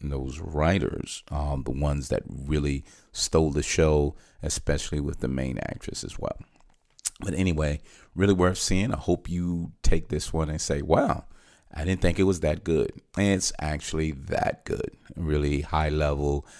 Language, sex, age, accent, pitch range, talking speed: English, male, 40-59, American, 75-90 Hz, 165 wpm